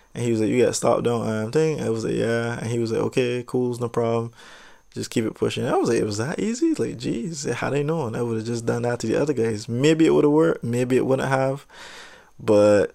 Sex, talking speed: male, 275 wpm